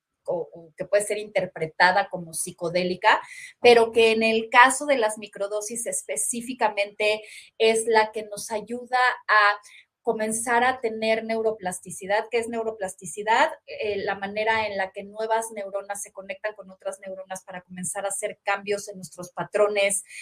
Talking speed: 150 wpm